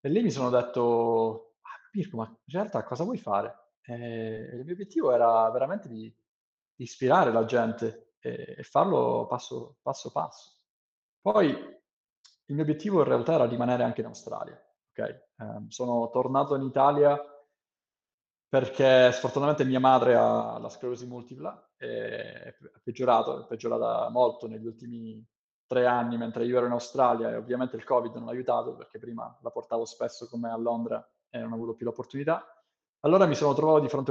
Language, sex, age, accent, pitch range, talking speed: Italian, male, 20-39, native, 115-155 Hz, 165 wpm